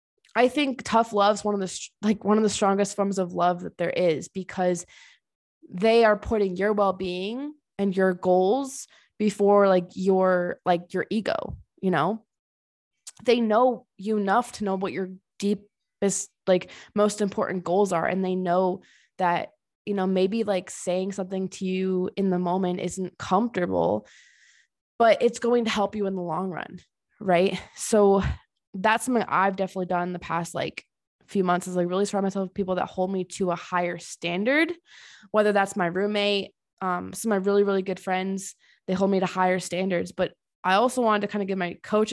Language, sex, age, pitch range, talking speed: English, female, 20-39, 185-215 Hz, 185 wpm